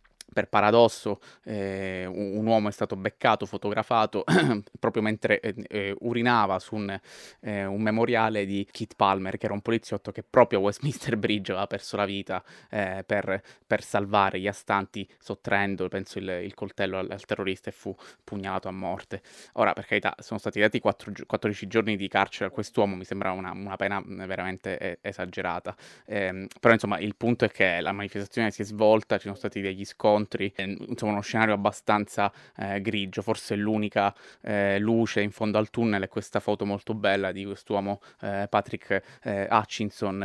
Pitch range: 95-110 Hz